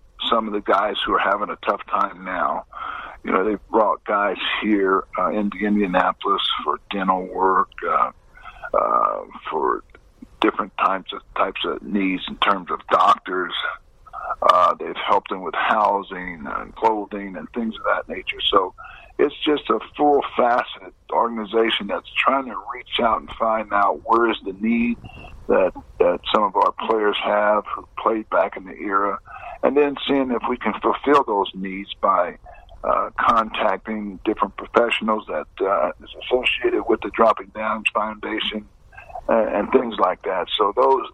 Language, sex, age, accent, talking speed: English, male, 50-69, American, 160 wpm